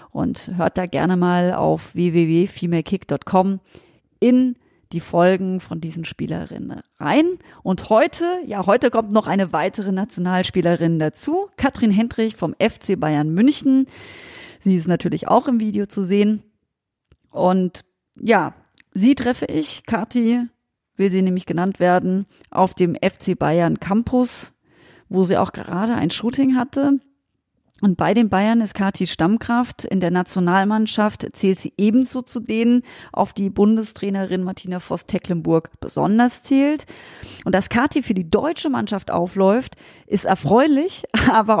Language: German